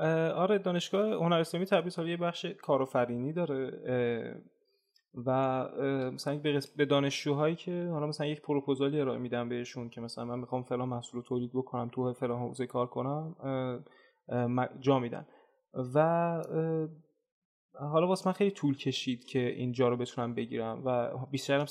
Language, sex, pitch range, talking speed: Persian, male, 125-155 Hz, 145 wpm